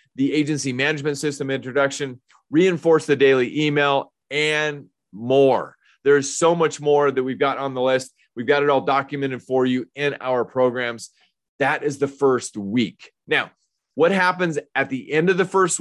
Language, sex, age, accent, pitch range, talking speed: English, male, 30-49, American, 135-170 Hz, 170 wpm